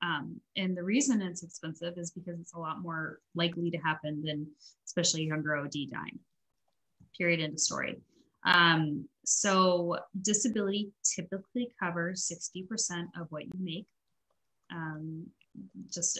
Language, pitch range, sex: English, 155-175 Hz, female